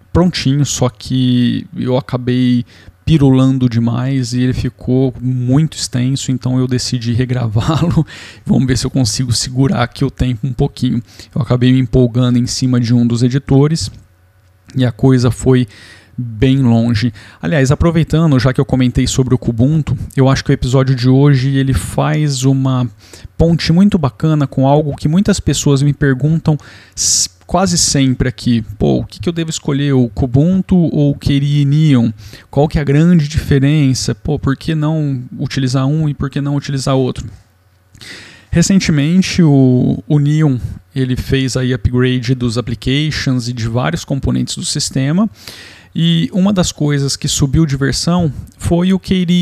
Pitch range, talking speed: 125-145 Hz, 160 wpm